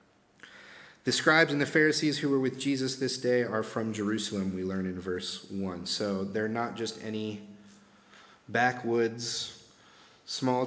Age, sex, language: 30-49, male, English